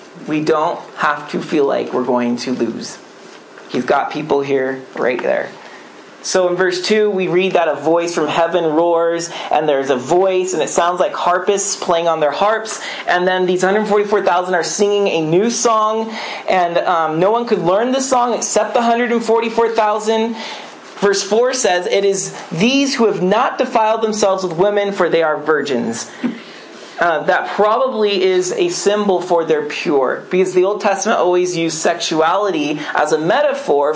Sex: male